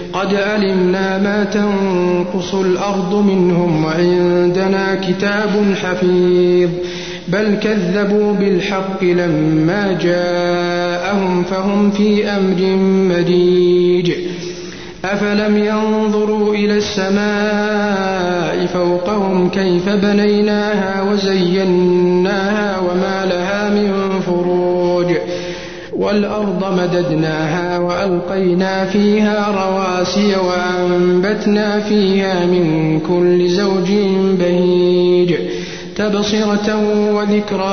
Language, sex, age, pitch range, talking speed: Arabic, male, 50-69, 180-205 Hz, 70 wpm